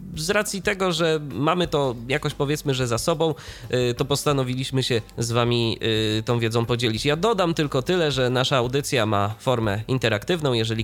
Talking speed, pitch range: 165 wpm, 110-150 Hz